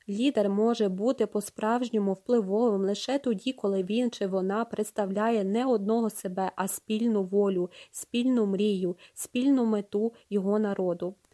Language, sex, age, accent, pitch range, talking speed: Ukrainian, female, 20-39, native, 200-230 Hz, 125 wpm